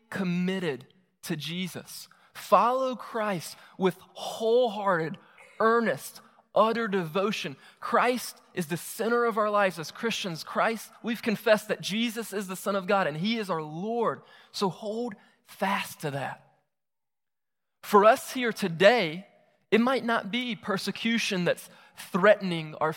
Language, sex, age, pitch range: English, male, 20-39, 180-230 Hz